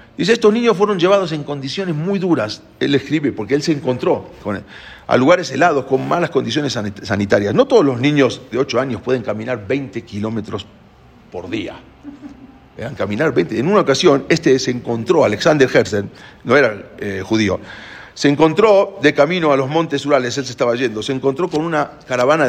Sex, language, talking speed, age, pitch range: male, English, 180 wpm, 50-69, 110-155 Hz